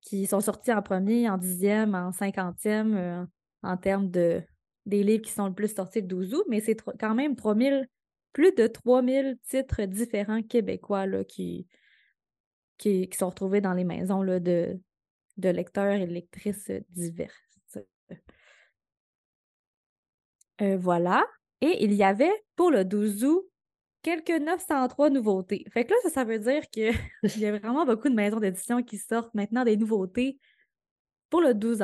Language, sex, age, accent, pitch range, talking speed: French, female, 20-39, Canadian, 185-235 Hz, 160 wpm